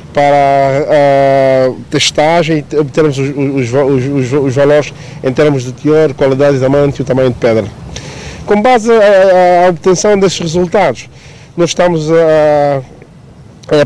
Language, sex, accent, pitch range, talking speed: Portuguese, male, Brazilian, 140-165 Hz, 145 wpm